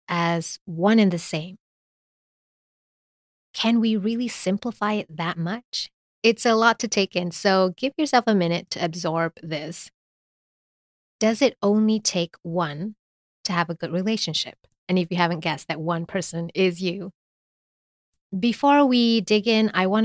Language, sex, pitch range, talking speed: English, female, 165-205 Hz, 155 wpm